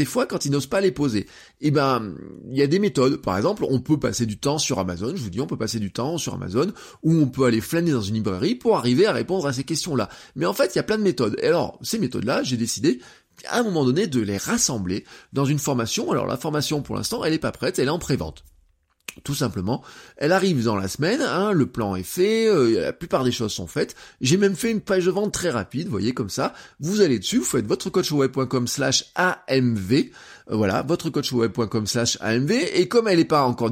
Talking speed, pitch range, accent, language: 240 wpm, 115-175 Hz, French, French